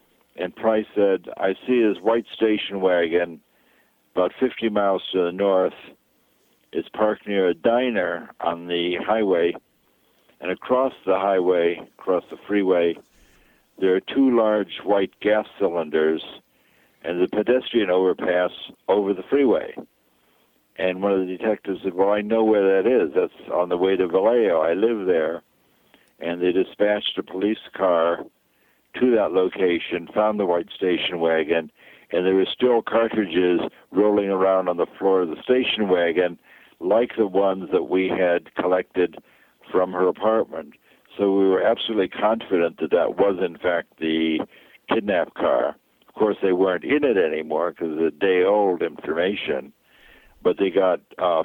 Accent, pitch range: American, 90-110 Hz